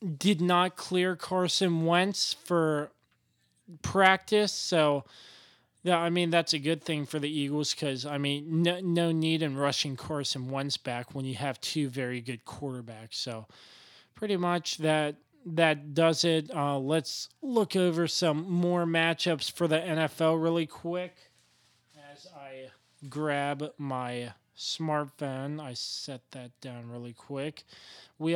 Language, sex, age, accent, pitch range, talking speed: English, male, 20-39, American, 135-170 Hz, 140 wpm